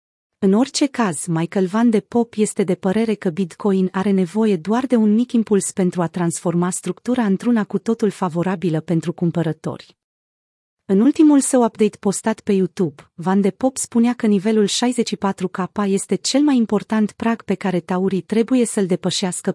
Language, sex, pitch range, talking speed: Romanian, female, 180-225 Hz, 165 wpm